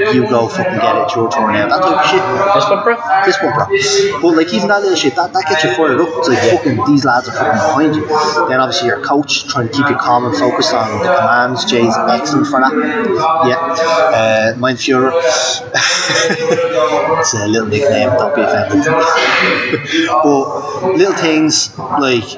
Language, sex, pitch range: English, male, 120-160 Hz